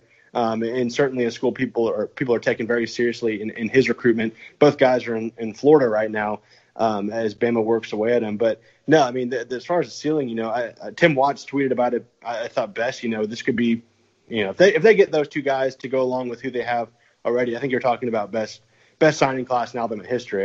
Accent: American